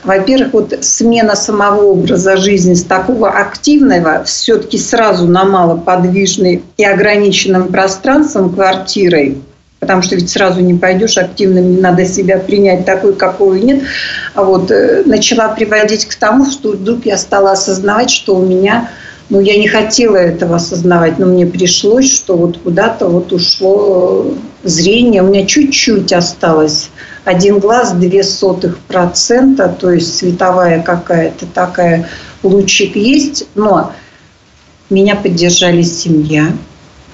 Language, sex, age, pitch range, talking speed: Russian, female, 50-69, 175-205 Hz, 130 wpm